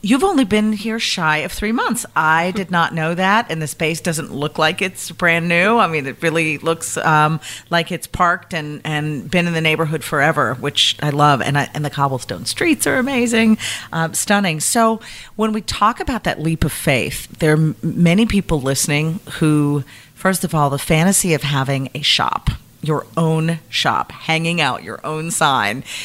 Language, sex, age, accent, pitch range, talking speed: English, female, 40-59, American, 145-175 Hz, 190 wpm